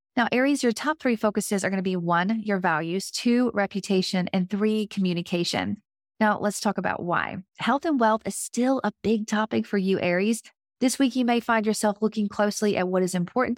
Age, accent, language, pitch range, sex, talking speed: 30-49, American, English, 185-230 Hz, female, 205 wpm